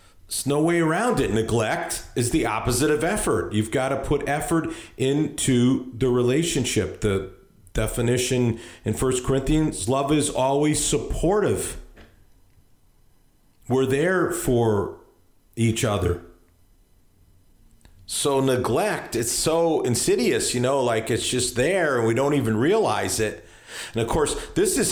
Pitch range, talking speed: 95-140 Hz, 130 wpm